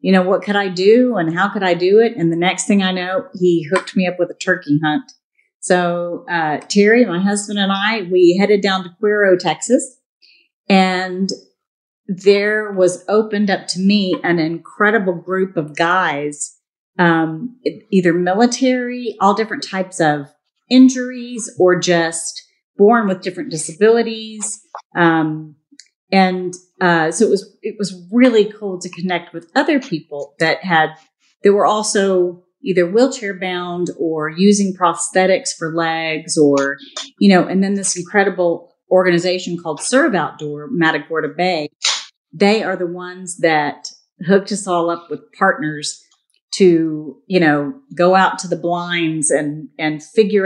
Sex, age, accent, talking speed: female, 40-59, American, 150 wpm